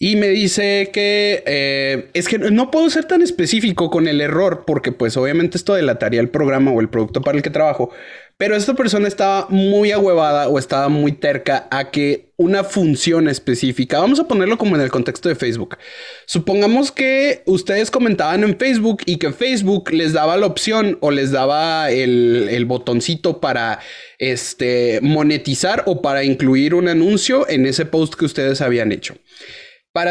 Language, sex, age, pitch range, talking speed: Spanish, male, 30-49, 135-205 Hz, 175 wpm